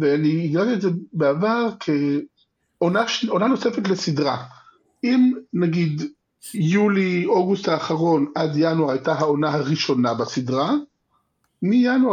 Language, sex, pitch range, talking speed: Hebrew, male, 140-190 Hz, 105 wpm